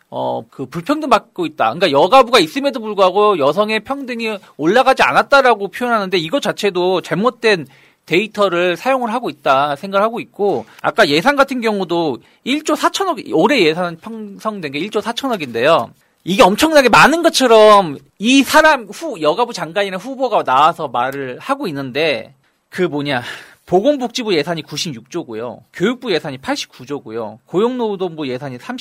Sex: male